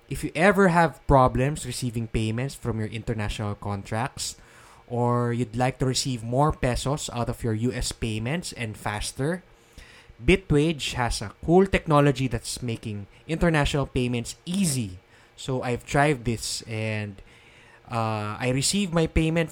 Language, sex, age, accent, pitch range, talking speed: English, male, 20-39, Filipino, 115-140 Hz, 140 wpm